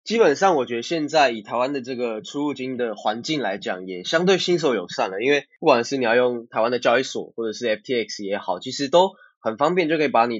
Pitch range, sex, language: 115-155 Hz, male, Chinese